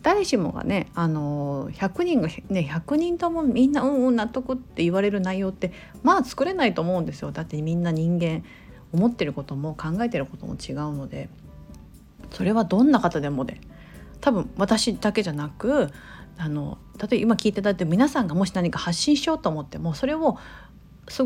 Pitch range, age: 165-240 Hz, 40-59